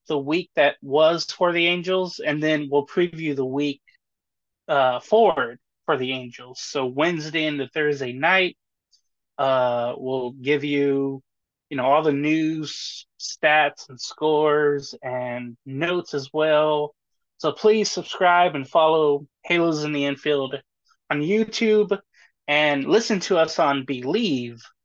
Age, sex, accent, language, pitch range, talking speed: 20-39, male, American, English, 145-200 Hz, 135 wpm